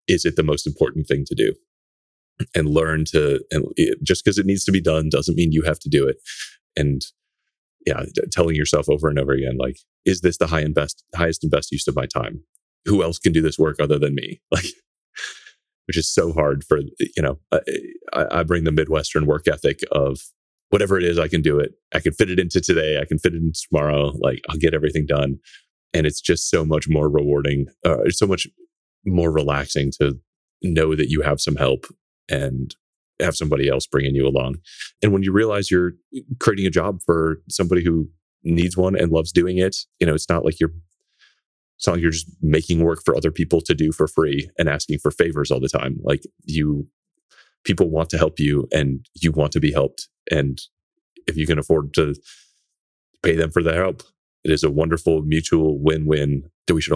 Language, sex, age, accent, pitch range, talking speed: English, male, 30-49, American, 70-85 Hz, 210 wpm